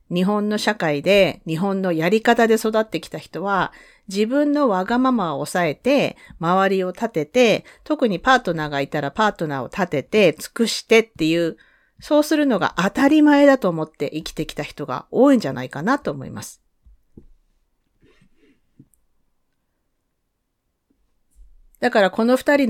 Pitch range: 170-280 Hz